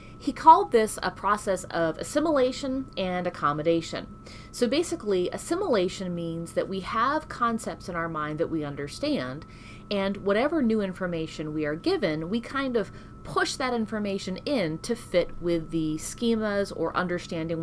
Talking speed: 150 wpm